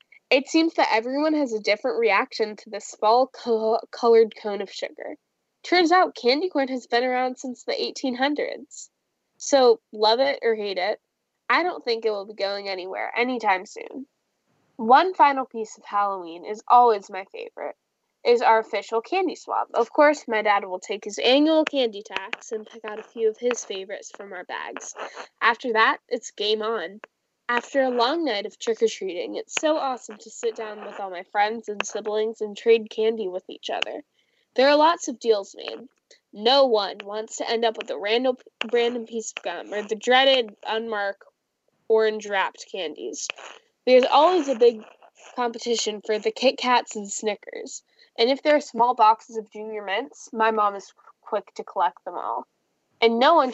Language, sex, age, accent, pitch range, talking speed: English, female, 10-29, American, 215-275 Hz, 180 wpm